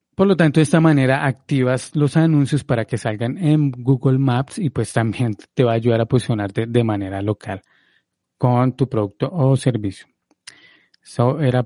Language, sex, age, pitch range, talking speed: Spanish, male, 30-49, 115-145 Hz, 175 wpm